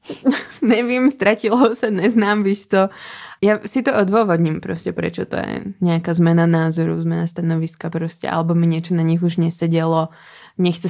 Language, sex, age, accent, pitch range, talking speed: Czech, female, 20-39, native, 165-180 Hz, 155 wpm